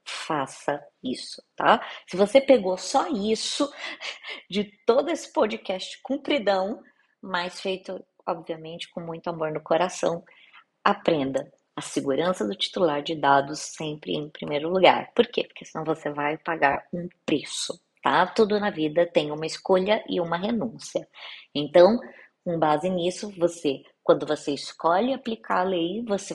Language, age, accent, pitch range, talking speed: Portuguese, 20-39, Brazilian, 170-230 Hz, 145 wpm